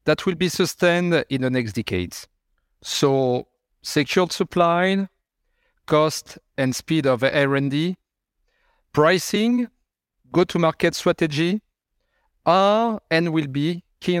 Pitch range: 130-175 Hz